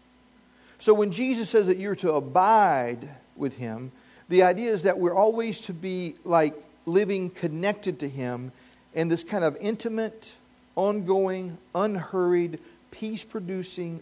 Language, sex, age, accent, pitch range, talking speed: English, male, 40-59, American, 145-195 Hz, 135 wpm